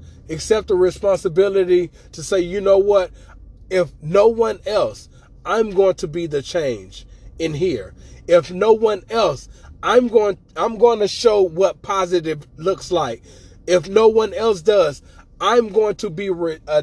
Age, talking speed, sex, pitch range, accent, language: 20-39, 160 wpm, male, 145-205 Hz, American, English